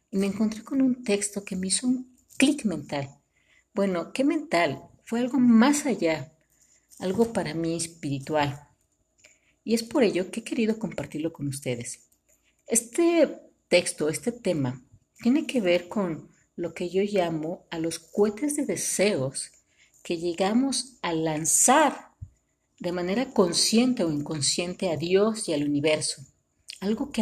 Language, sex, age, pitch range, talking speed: Spanish, female, 50-69, 160-230 Hz, 145 wpm